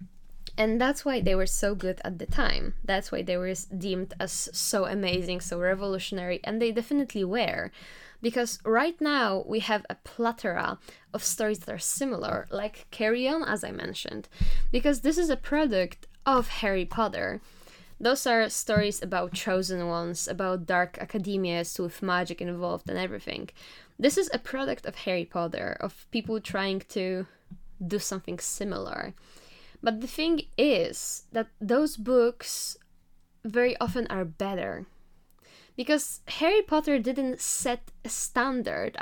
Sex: female